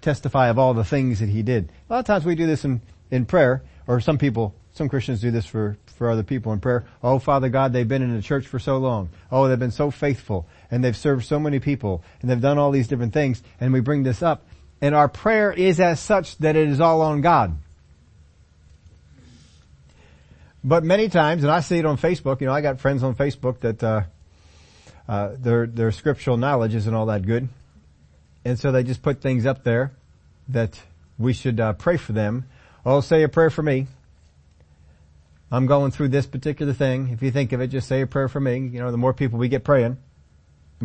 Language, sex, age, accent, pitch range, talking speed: English, male, 40-59, American, 80-135 Hz, 220 wpm